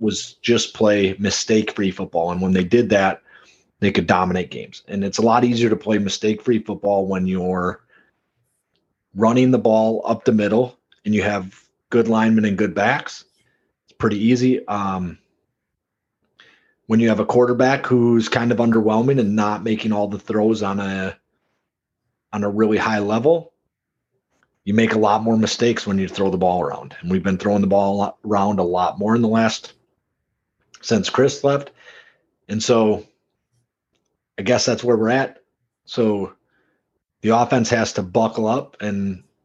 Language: English